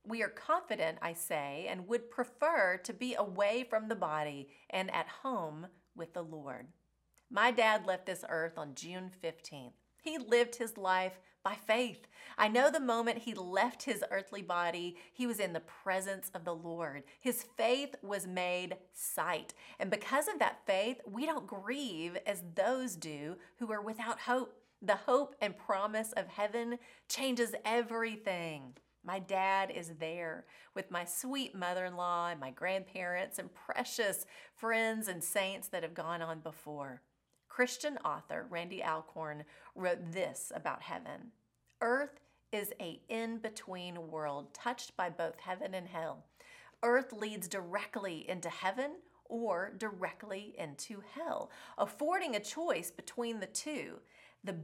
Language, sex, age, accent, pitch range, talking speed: English, female, 30-49, American, 175-240 Hz, 150 wpm